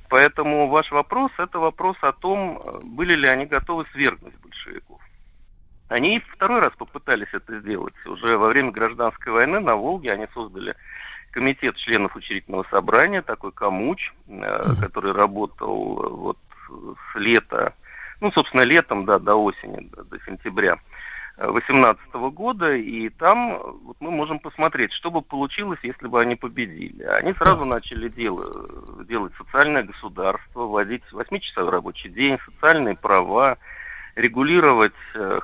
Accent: native